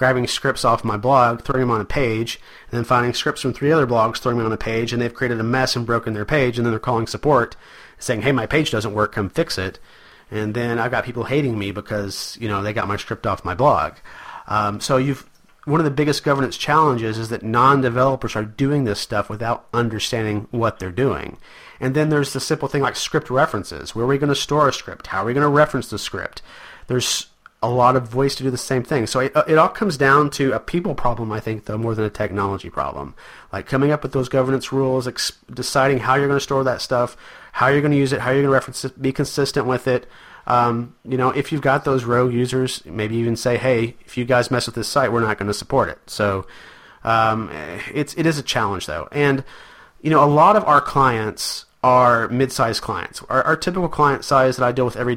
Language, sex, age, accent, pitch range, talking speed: English, male, 40-59, American, 110-135 Hz, 245 wpm